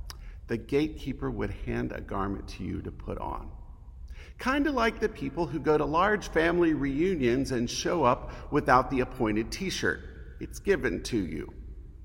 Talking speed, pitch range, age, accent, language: 165 wpm, 95-160 Hz, 50-69, American, English